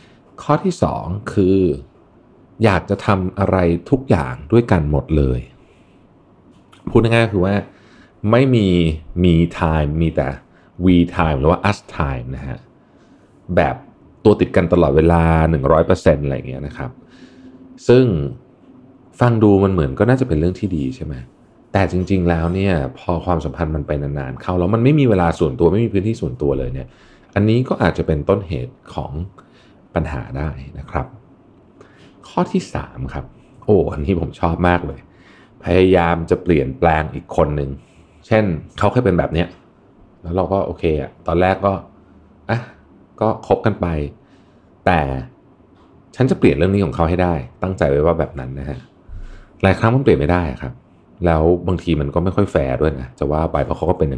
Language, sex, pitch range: Thai, male, 75-100 Hz